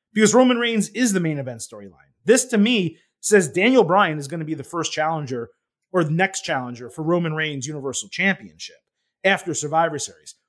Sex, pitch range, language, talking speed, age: male, 155-195 Hz, English, 190 wpm, 30-49